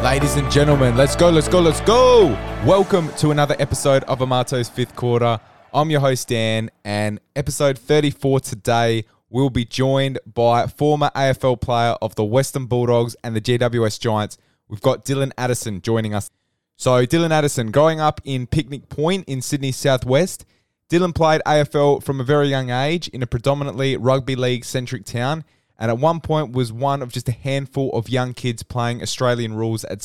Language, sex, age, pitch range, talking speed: English, male, 20-39, 120-140 Hz, 175 wpm